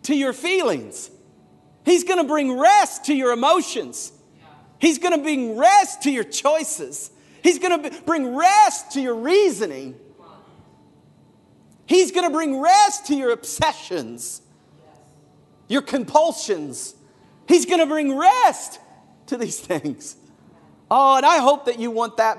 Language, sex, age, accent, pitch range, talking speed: English, male, 40-59, American, 180-295 Hz, 140 wpm